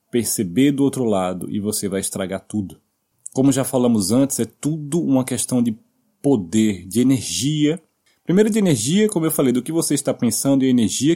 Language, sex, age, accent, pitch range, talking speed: Portuguese, male, 20-39, Brazilian, 105-140 Hz, 190 wpm